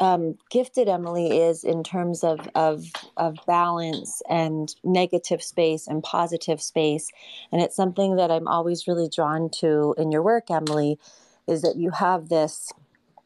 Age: 30-49